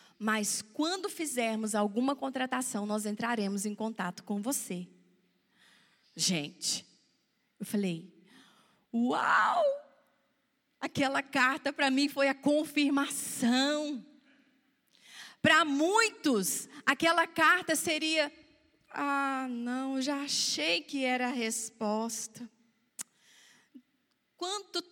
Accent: Brazilian